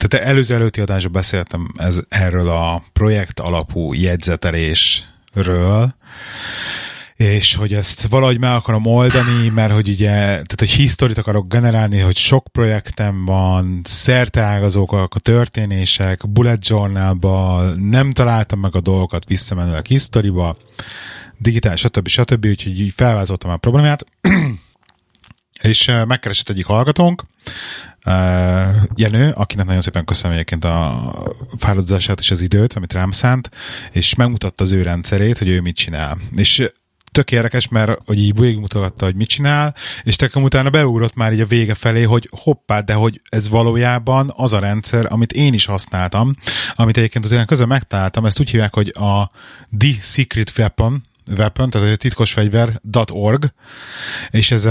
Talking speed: 145 wpm